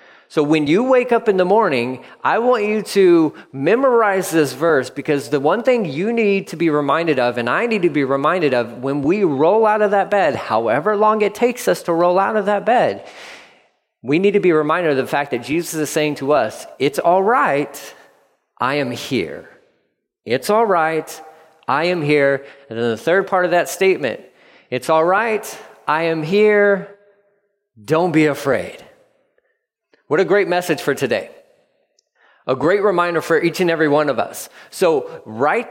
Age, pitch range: 30-49, 155-220 Hz